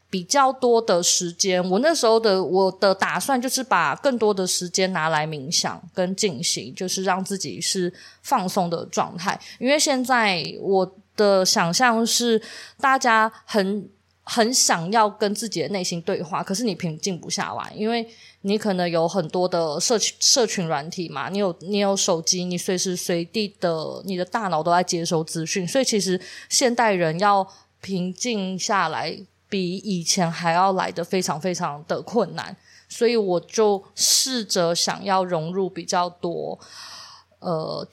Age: 20-39